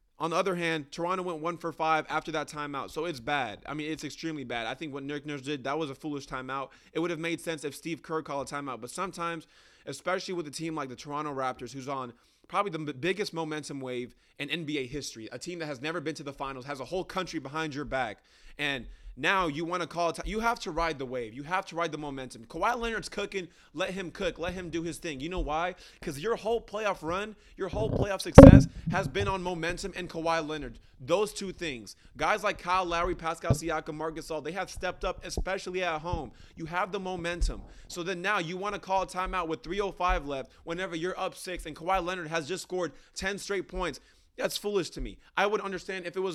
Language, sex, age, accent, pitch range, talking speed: English, male, 20-39, American, 150-190 Hz, 235 wpm